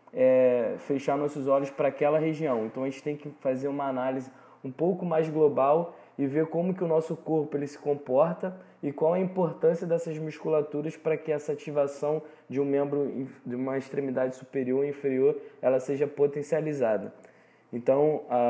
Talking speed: 170 wpm